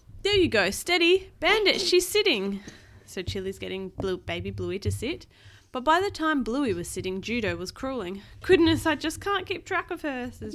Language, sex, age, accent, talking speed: English, female, 20-39, Australian, 195 wpm